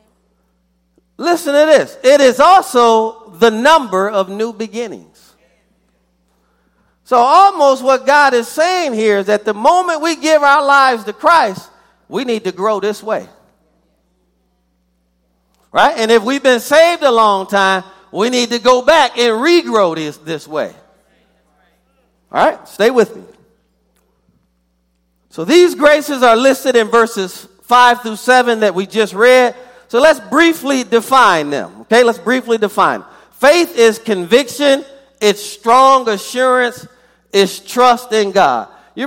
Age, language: 40-59, English